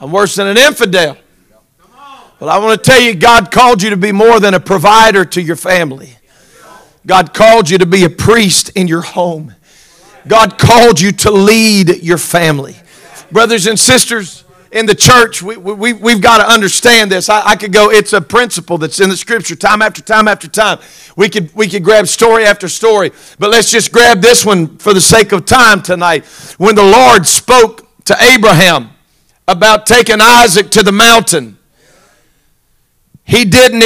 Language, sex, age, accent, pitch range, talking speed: English, male, 50-69, American, 190-240 Hz, 185 wpm